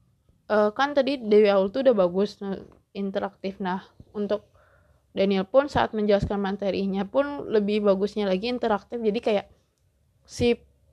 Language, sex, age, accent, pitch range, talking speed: Indonesian, female, 20-39, native, 205-240 Hz, 125 wpm